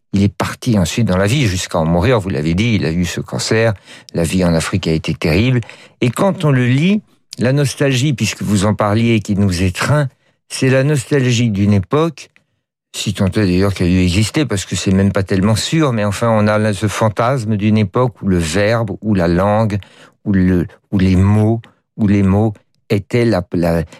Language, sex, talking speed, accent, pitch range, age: French, male, 210 wpm, French, 100-120 Hz, 60-79